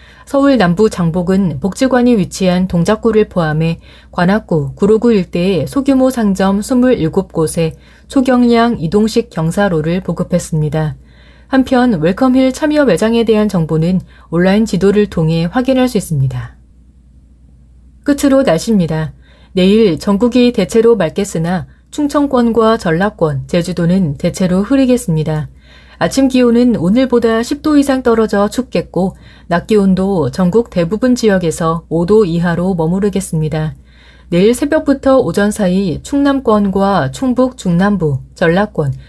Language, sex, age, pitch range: Korean, female, 30-49, 165-230 Hz